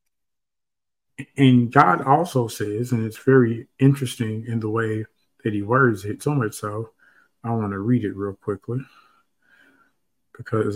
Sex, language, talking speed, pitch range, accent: male, English, 145 wpm, 110-135 Hz, American